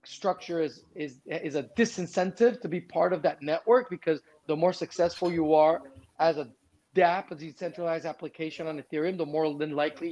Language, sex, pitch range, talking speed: English, male, 165-210 Hz, 180 wpm